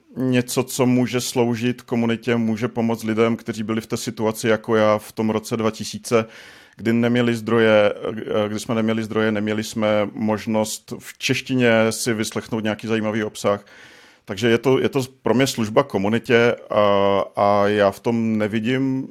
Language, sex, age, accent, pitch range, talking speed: Czech, male, 50-69, native, 110-120 Hz, 155 wpm